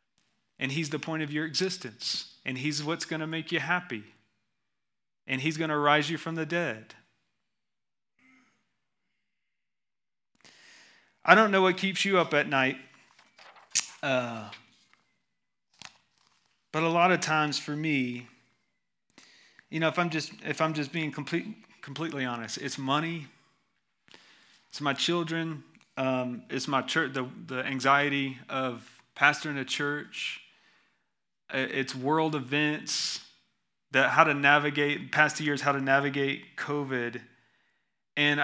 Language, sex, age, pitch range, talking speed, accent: English, male, 30-49, 130-165 Hz, 130 wpm, American